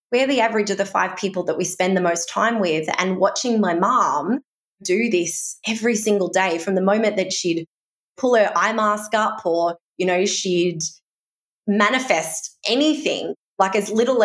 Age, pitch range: 20-39, 180-220 Hz